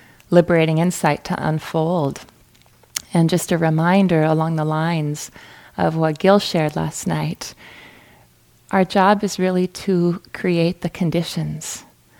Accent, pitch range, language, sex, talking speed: American, 150-175 Hz, English, female, 125 wpm